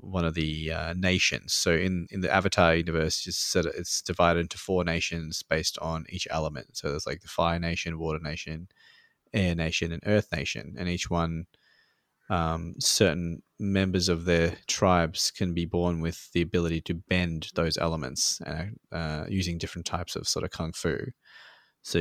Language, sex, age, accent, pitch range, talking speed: English, male, 20-39, Australian, 85-95 Hz, 175 wpm